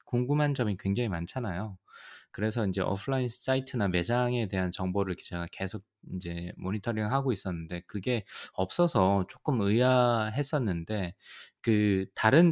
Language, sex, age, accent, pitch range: Korean, male, 20-39, native, 95-125 Hz